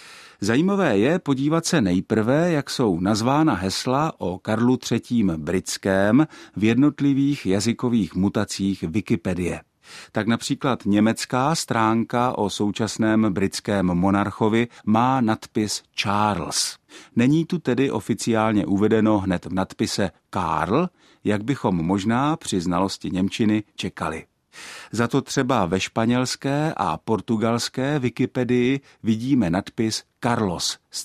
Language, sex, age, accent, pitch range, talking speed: Czech, male, 50-69, native, 95-125 Hz, 110 wpm